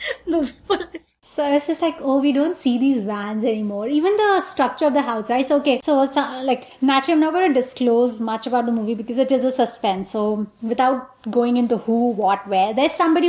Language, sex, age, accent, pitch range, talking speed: English, female, 20-39, Indian, 240-330 Hz, 210 wpm